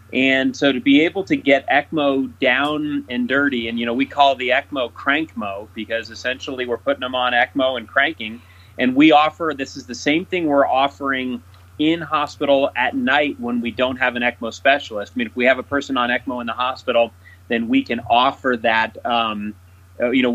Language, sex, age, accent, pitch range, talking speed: English, male, 30-49, American, 120-140 Hz, 205 wpm